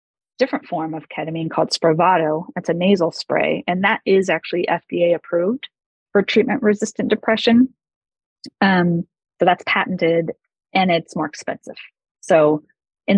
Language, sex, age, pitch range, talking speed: English, female, 30-49, 165-205 Hz, 135 wpm